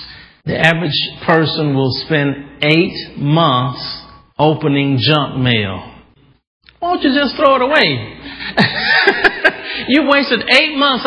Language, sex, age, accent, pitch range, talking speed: English, male, 40-59, American, 140-215 Hz, 115 wpm